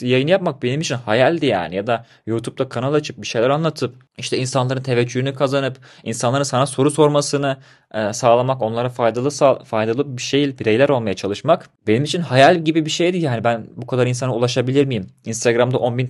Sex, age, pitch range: male, 30-49, 115-145 Hz